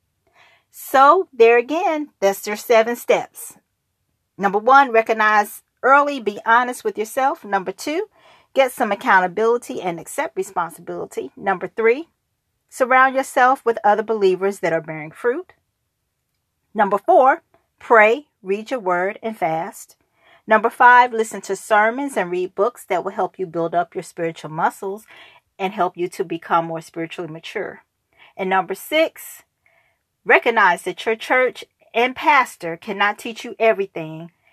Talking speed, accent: 140 wpm, American